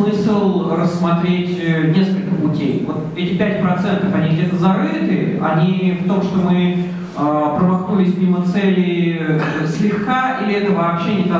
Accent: native